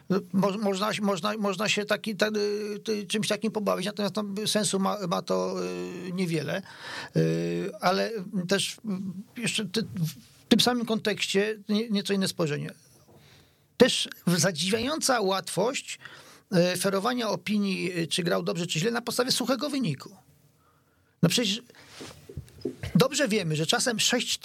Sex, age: male, 40-59